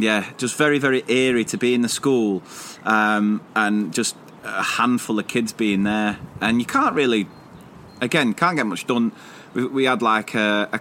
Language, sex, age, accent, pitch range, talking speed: English, male, 30-49, British, 105-125 Hz, 185 wpm